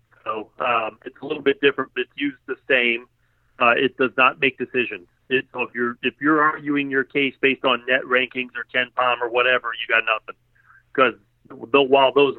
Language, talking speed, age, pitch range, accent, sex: English, 210 wpm, 40-59, 120-135 Hz, American, male